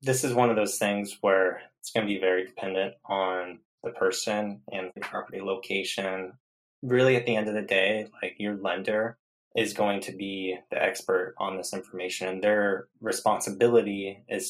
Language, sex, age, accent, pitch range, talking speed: English, male, 20-39, American, 95-115 Hz, 180 wpm